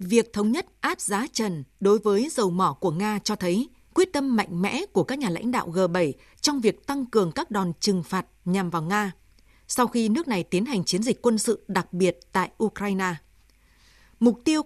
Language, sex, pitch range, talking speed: Vietnamese, female, 185-235 Hz, 210 wpm